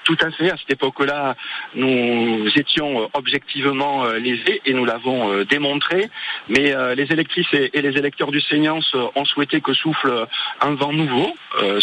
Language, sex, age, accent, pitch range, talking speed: French, male, 40-59, French, 125-150 Hz, 145 wpm